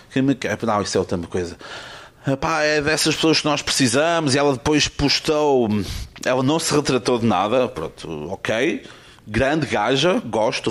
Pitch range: 115-145 Hz